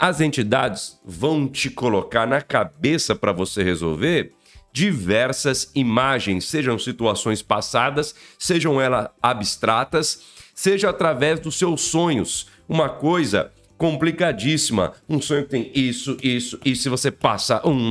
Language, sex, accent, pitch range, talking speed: Portuguese, male, Brazilian, 115-160 Hz, 125 wpm